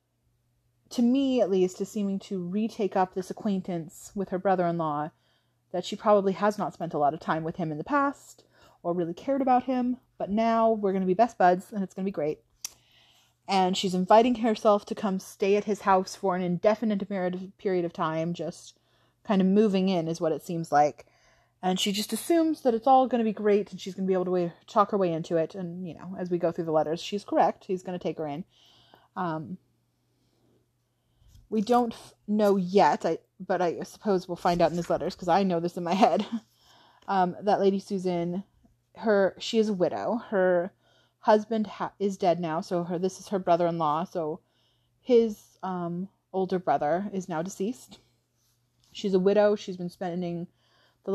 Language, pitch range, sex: English, 170-205 Hz, female